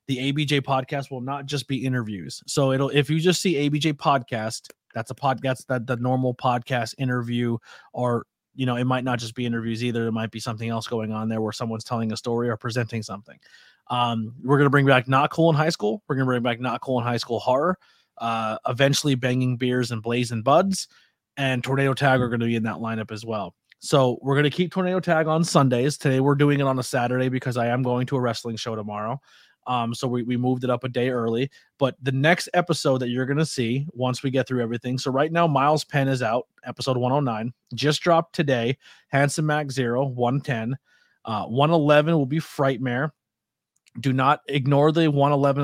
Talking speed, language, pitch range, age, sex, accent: 210 wpm, English, 120-140 Hz, 20-39, male, American